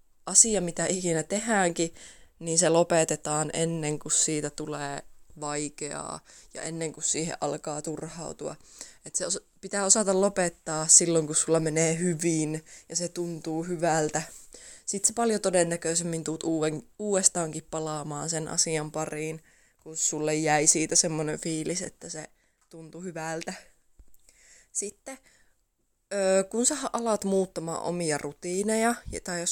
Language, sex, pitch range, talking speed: Finnish, female, 155-195 Hz, 125 wpm